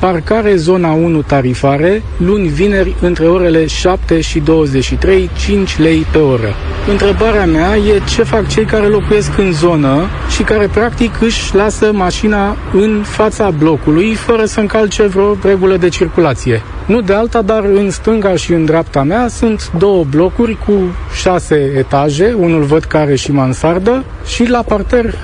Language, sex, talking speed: Romanian, male, 155 wpm